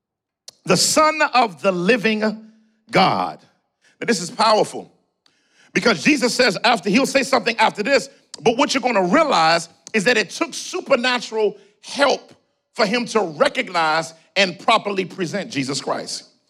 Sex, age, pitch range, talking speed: male, 50-69, 175-255 Hz, 145 wpm